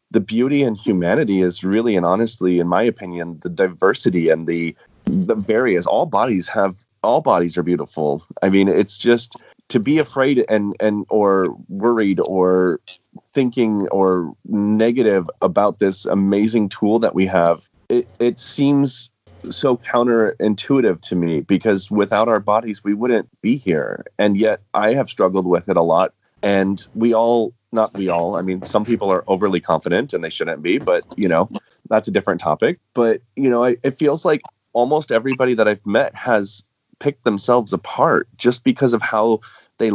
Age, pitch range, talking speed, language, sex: 30-49, 95-120 Hz, 170 wpm, English, male